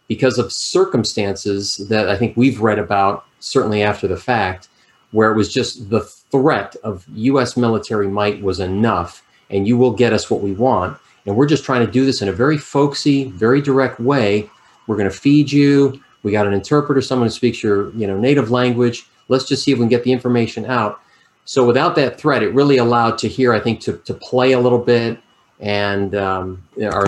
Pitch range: 100-125 Hz